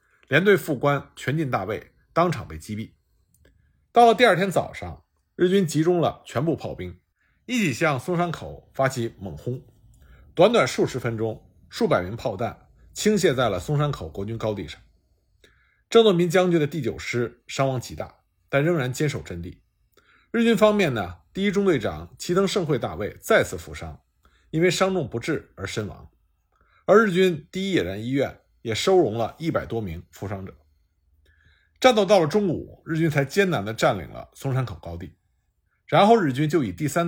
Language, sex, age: Chinese, male, 50-69